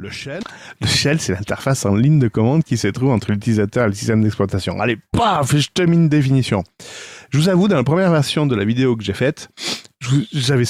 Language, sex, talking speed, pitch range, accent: French, male, 215 wpm, 105-130 Hz, French